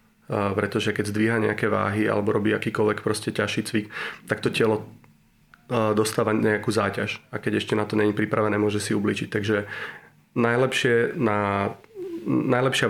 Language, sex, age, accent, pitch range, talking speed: Czech, male, 30-49, native, 105-120 Hz, 140 wpm